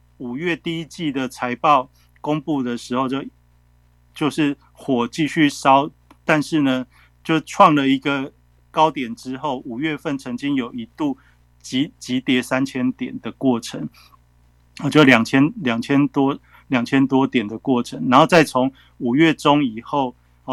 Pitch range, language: 120-150 Hz, Chinese